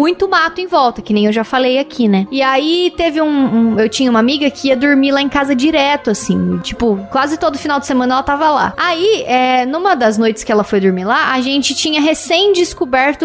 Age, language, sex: 20-39, Portuguese, female